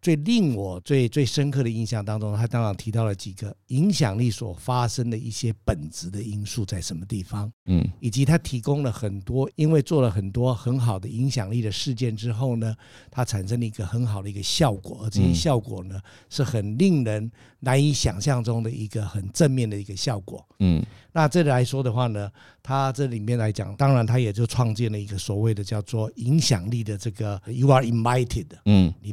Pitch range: 105-130 Hz